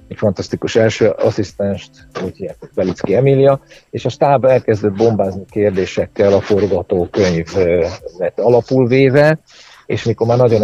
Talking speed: 125 wpm